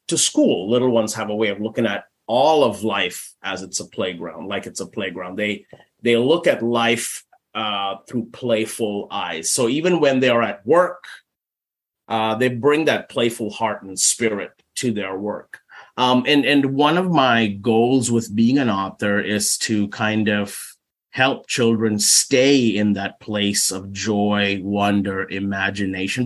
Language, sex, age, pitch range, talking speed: English, male, 30-49, 105-125 Hz, 165 wpm